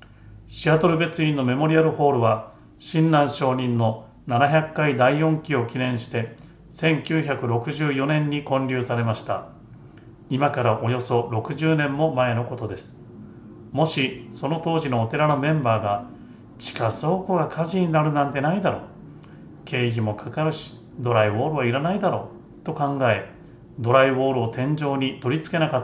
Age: 40-59